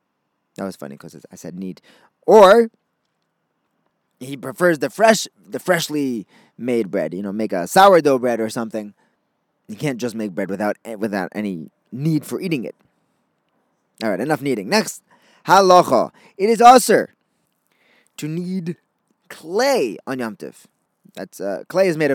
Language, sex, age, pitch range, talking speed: English, male, 20-39, 115-180 Hz, 150 wpm